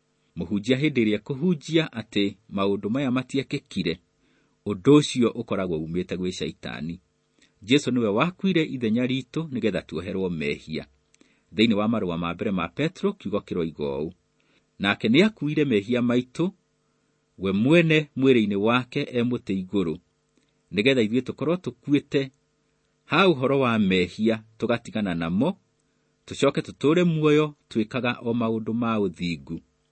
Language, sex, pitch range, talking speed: English, male, 95-145 Hz, 115 wpm